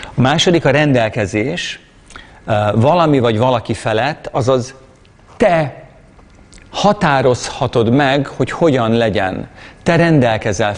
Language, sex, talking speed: Hungarian, male, 95 wpm